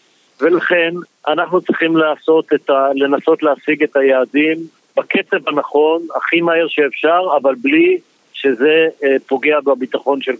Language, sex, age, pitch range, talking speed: Hebrew, male, 50-69, 135-165 Hz, 110 wpm